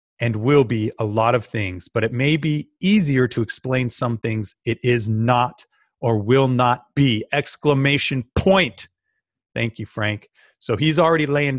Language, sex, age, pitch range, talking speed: English, male, 30-49, 110-135 Hz, 165 wpm